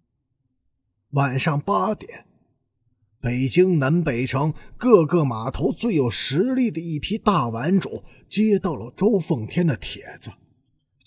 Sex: male